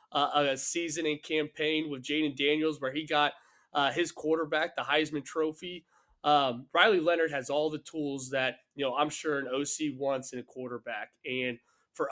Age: 20-39